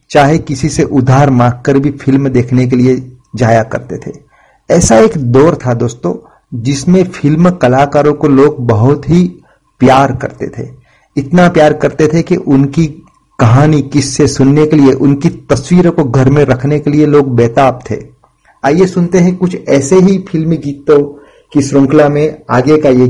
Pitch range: 130-155 Hz